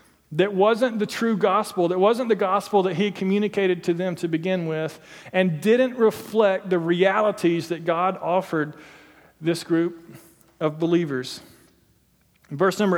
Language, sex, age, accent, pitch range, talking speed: English, male, 40-59, American, 170-205 Hz, 145 wpm